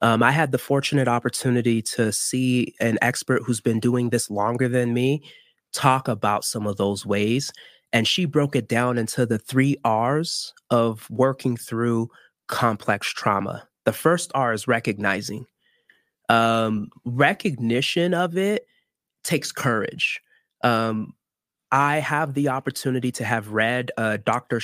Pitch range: 115-140 Hz